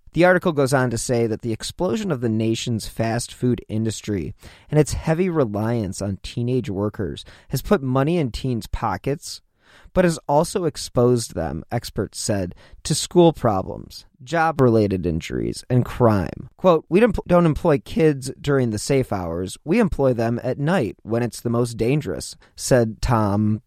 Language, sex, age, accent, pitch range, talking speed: English, male, 30-49, American, 105-135 Hz, 160 wpm